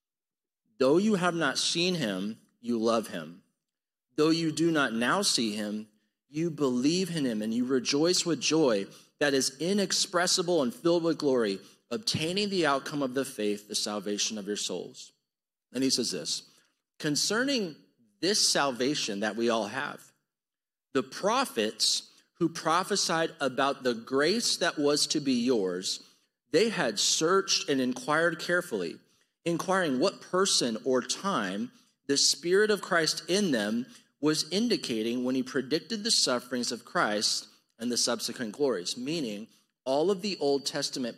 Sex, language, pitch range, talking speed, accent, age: male, English, 125-185 Hz, 150 wpm, American, 40-59